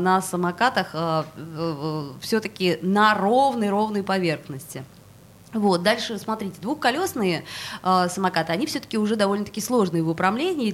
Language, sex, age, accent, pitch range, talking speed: Russian, female, 20-39, native, 165-220 Hz, 130 wpm